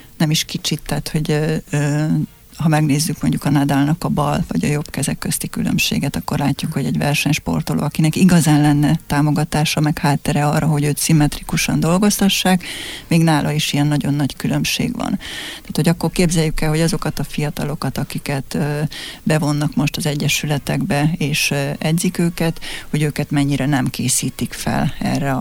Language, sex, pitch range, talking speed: Hungarian, female, 145-160 Hz, 170 wpm